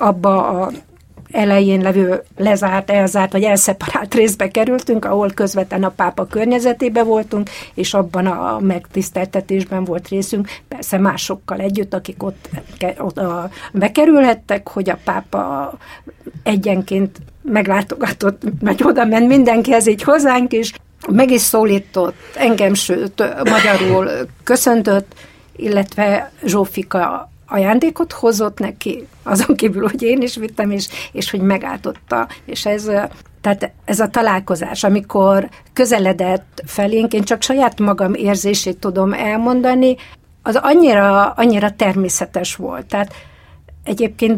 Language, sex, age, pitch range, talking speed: Hungarian, female, 60-79, 195-235 Hz, 115 wpm